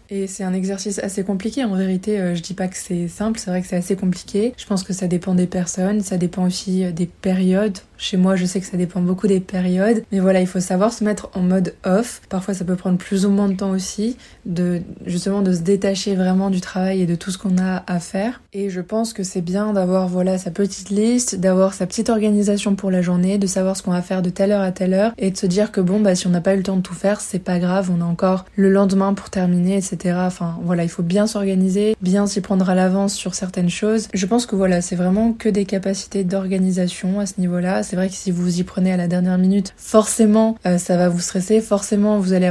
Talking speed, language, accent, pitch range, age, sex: 260 wpm, French, French, 185-200 Hz, 20-39, female